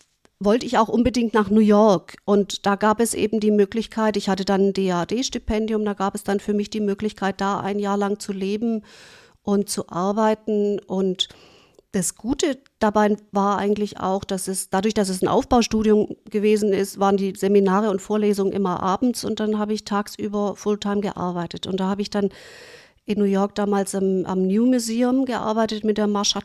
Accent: German